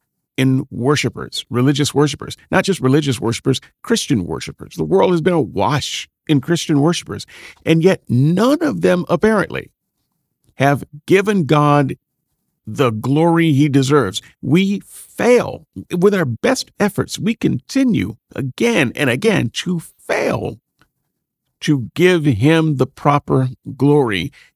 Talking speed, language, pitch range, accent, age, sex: 120 wpm, English, 135-185 Hz, American, 50-69, male